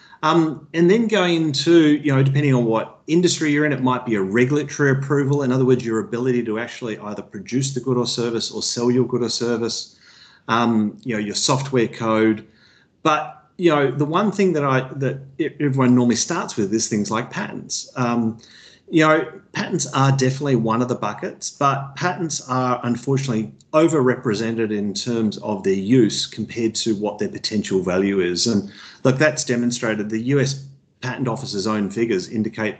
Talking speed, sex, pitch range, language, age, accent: 180 wpm, male, 110-150 Hz, English, 40-59, Australian